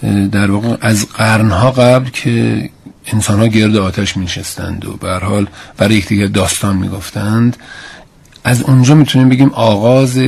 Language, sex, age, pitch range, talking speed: Persian, male, 40-59, 95-120 Hz, 130 wpm